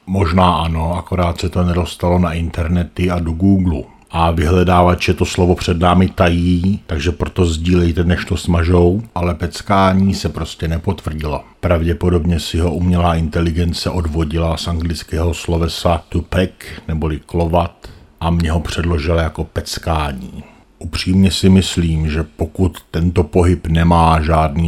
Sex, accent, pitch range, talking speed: male, native, 80-90 Hz, 140 wpm